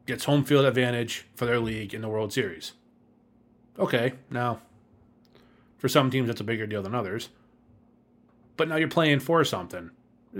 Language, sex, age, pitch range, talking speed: English, male, 20-39, 110-135 Hz, 165 wpm